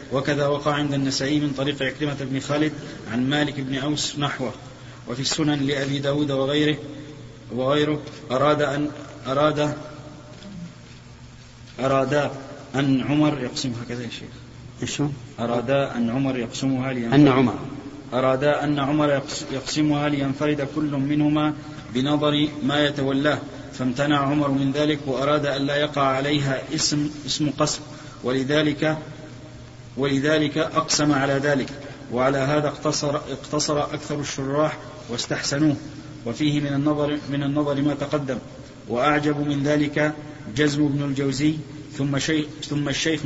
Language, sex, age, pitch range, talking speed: Arabic, male, 30-49, 135-150 Hz, 115 wpm